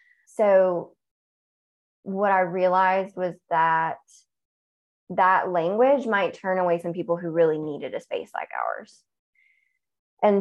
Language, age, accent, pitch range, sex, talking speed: English, 20-39, American, 165-195 Hz, female, 120 wpm